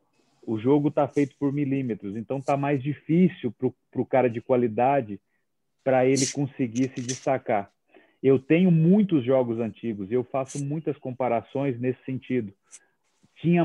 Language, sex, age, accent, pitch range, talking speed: Portuguese, male, 40-59, Brazilian, 130-155 Hz, 145 wpm